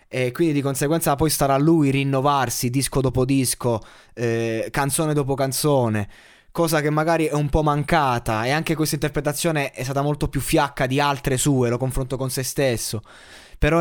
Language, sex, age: Italian, male, 20-39